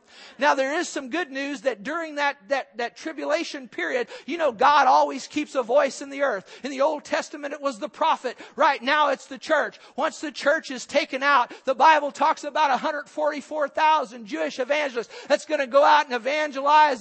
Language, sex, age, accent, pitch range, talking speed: English, male, 50-69, American, 280-315 Hz, 200 wpm